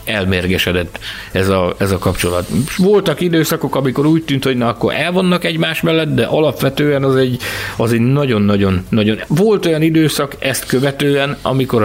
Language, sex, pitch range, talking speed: Hungarian, male, 110-145 Hz, 145 wpm